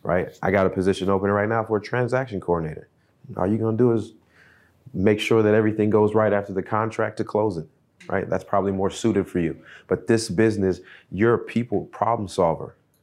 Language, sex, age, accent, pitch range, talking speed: English, male, 30-49, American, 95-110 Hz, 210 wpm